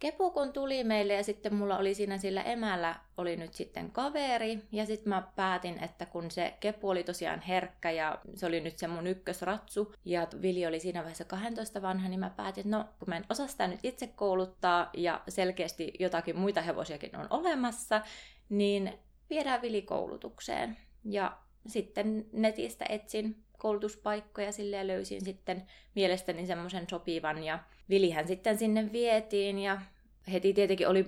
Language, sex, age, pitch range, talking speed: Finnish, female, 20-39, 170-210 Hz, 160 wpm